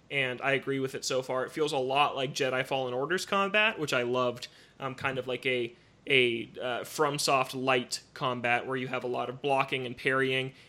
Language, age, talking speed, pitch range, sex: English, 20-39, 215 wpm, 130-150 Hz, male